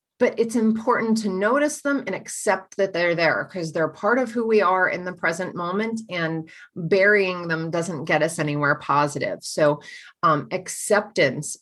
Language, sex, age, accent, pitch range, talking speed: English, female, 30-49, American, 170-215 Hz, 170 wpm